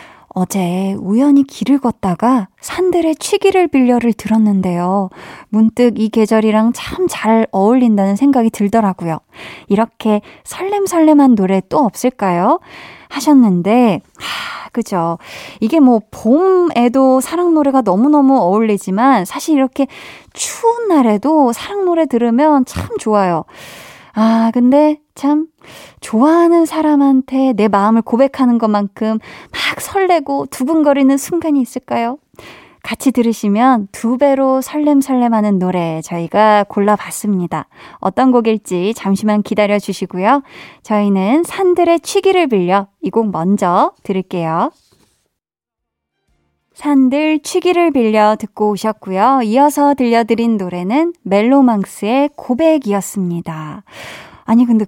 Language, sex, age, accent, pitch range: Korean, female, 20-39, native, 210-300 Hz